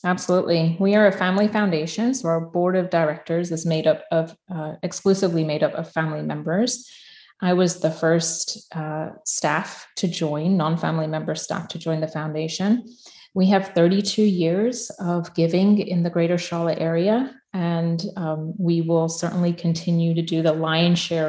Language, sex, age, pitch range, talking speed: English, female, 30-49, 160-195 Hz, 170 wpm